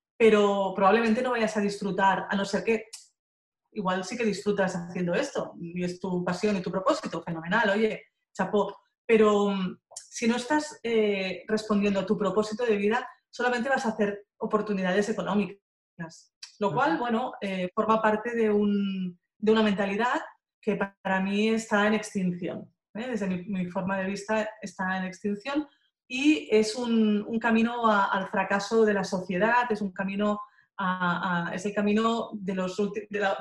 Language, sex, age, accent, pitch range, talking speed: Spanish, female, 30-49, Spanish, 195-220 Hz, 170 wpm